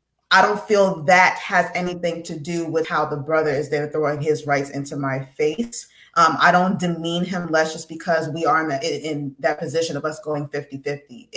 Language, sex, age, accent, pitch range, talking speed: English, female, 20-39, American, 165-195 Hz, 205 wpm